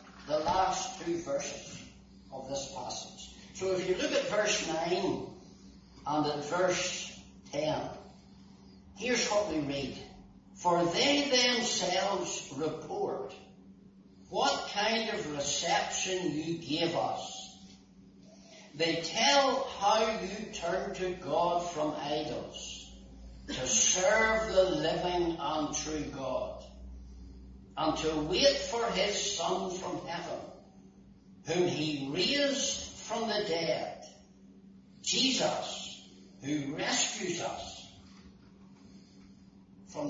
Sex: male